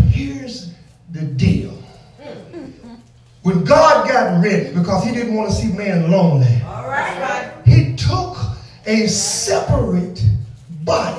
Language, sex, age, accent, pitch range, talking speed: English, male, 40-59, American, 170-250 Hz, 95 wpm